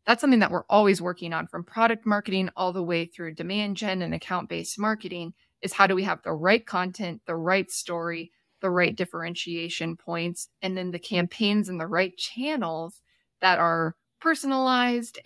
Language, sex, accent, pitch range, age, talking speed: English, female, American, 170-210 Hz, 20-39, 180 wpm